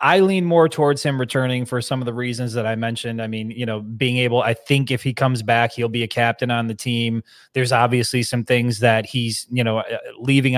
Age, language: 20-39, English